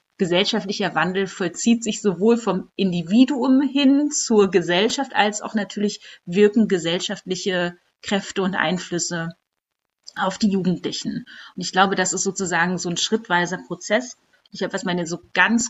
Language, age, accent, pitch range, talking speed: German, 30-49, German, 180-215 Hz, 140 wpm